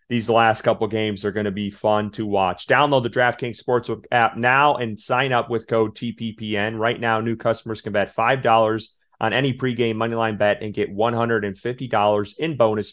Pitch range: 105-120 Hz